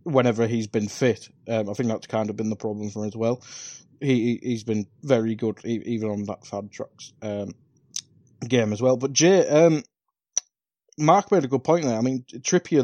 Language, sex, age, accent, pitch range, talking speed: English, male, 20-39, British, 110-145 Hz, 205 wpm